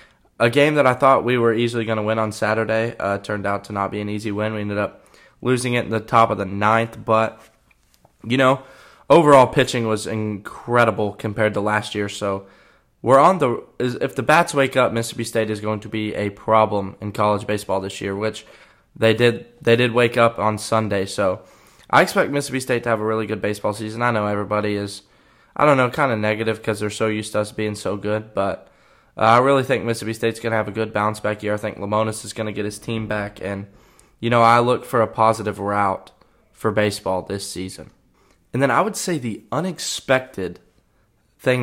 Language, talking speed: English, 220 wpm